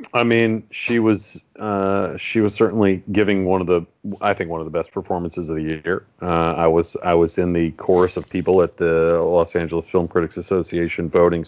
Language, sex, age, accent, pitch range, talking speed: English, male, 40-59, American, 85-105 Hz, 210 wpm